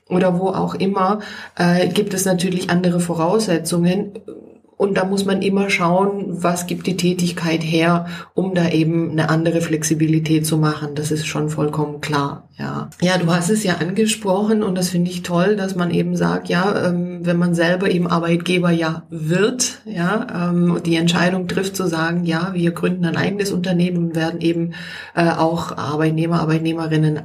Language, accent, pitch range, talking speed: German, German, 165-195 Hz, 175 wpm